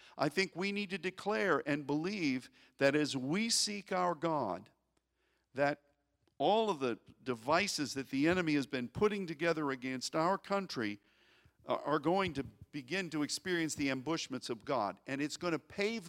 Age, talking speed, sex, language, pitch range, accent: 50-69, 165 wpm, male, English, 120-160 Hz, American